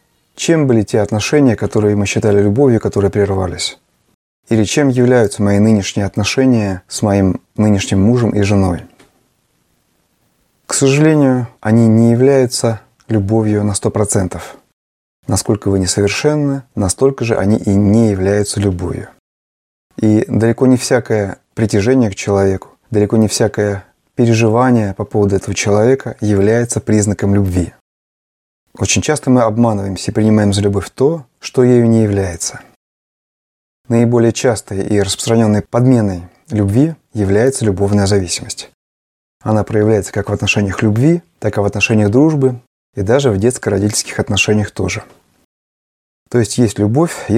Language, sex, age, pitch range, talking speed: Russian, male, 30-49, 100-120 Hz, 130 wpm